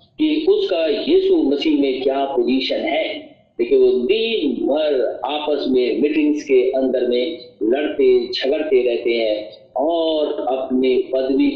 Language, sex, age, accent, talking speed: Hindi, male, 50-69, native, 120 wpm